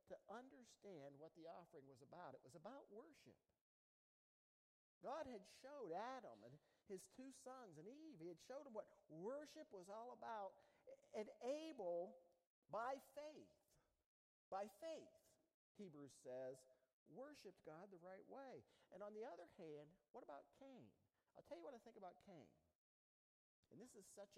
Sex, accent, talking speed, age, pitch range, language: male, American, 155 wpm, 50-69, 160-265 Hz, English